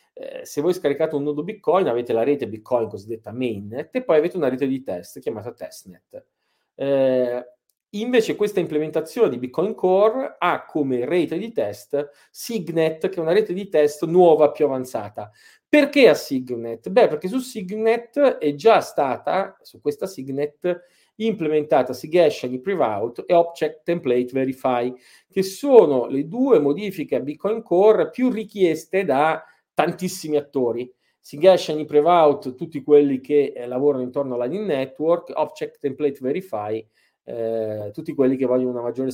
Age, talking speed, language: 40-59, 155 wpm, Italian